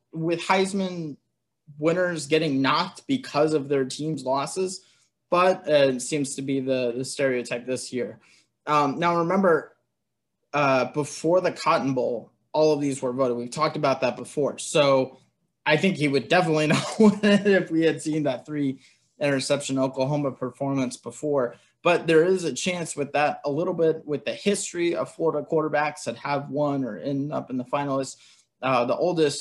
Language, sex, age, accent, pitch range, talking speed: English, male, 20-39, American, 135-165 Hz, 170 wpm